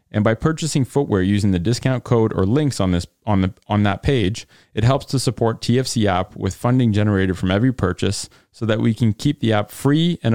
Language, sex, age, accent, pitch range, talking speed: English, male, 30-49, American, 100-125 Hz, 220 wpm